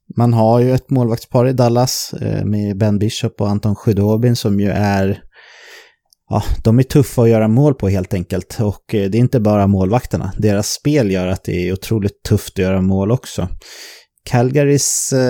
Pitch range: 100-130 Hz